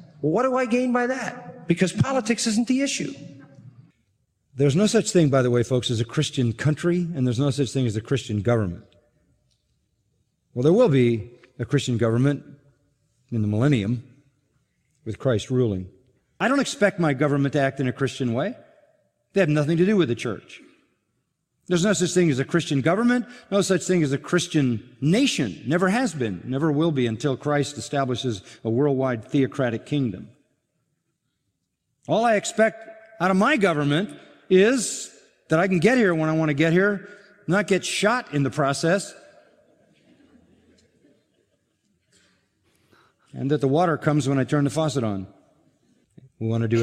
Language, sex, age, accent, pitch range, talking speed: English, male, 40-59, American, 125-180 Hz, 170 wpm